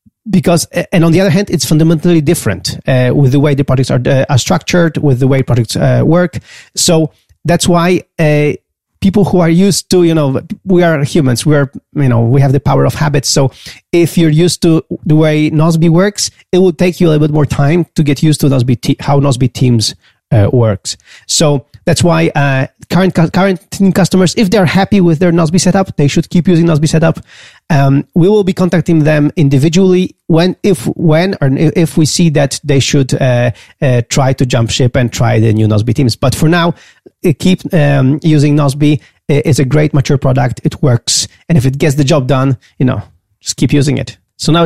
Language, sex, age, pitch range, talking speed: English, male, 30-49, 135-170 Hz, 210 wpm